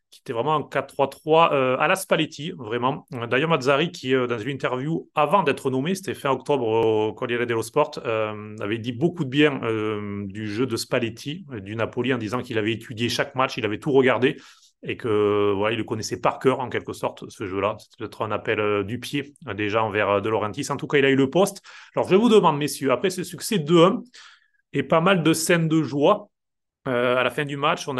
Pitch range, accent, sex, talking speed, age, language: 120-150 Hz, French, male, 225 wpm, 30-49, French